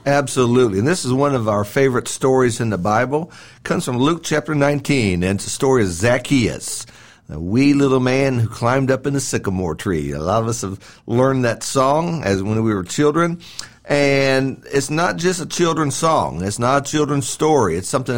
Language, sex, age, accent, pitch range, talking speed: English, male, 50-69, American, 110-145 Hz, 205 wpm